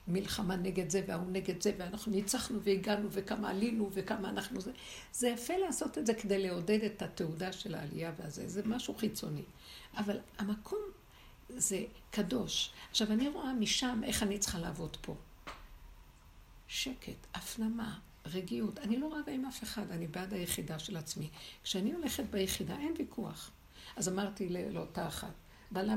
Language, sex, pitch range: Hebrew, female, 185-235 Hz